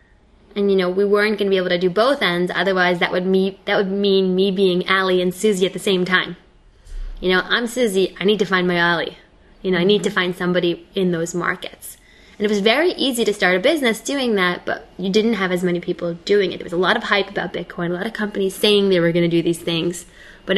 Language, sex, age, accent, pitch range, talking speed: English, female, 10-29, American, 180-205 Hz, 260 wpm